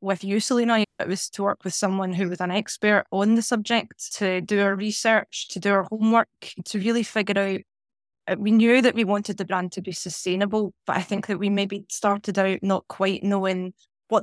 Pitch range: 190-220 Hz